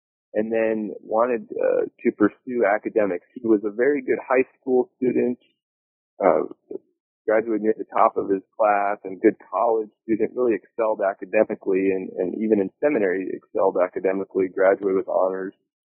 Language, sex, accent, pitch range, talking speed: English, male, American, 100-135 Hz, 155 wpm